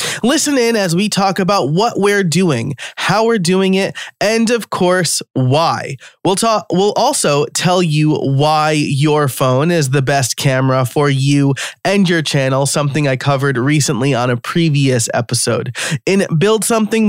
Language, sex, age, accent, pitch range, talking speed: English, male, 20-39, American, 130-175 Hz, 160 wpm